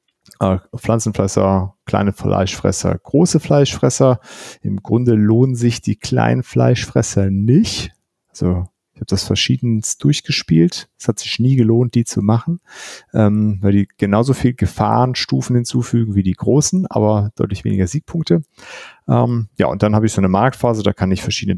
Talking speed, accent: 150 wpm, German